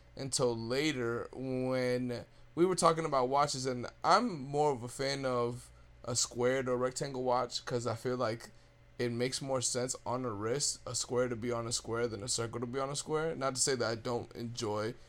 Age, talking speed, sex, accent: 20-39, 210 wpm, male, American